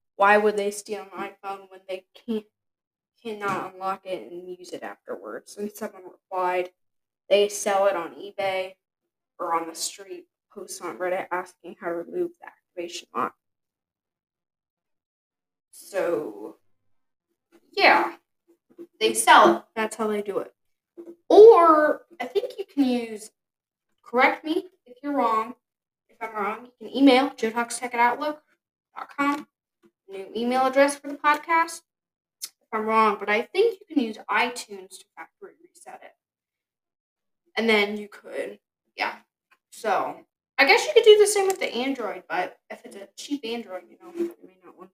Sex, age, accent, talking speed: female, 10-29, American, 150 wpm